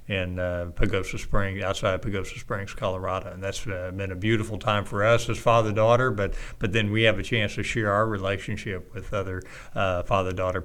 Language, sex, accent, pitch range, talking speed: English, male, American, 95-110 Hz, 195 wpm